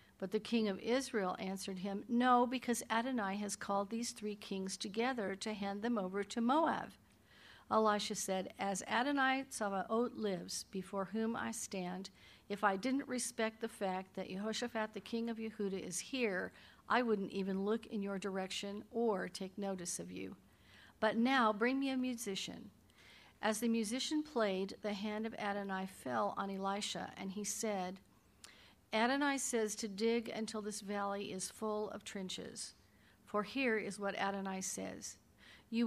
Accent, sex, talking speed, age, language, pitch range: American, female, 160 wpm, 50-69, English, 195-230 Hz